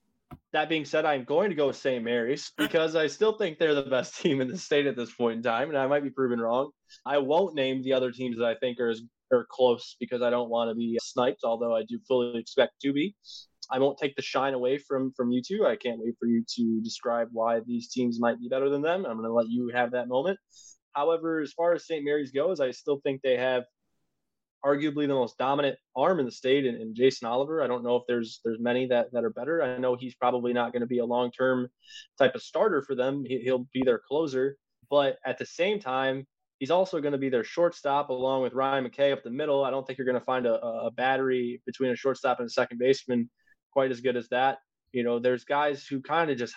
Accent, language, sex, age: American, English, male, 20-39